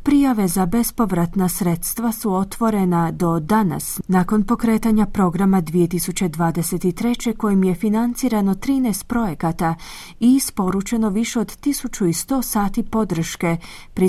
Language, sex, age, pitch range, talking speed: Croatian, female, 30-49, 175-225 Hz, 105 wpm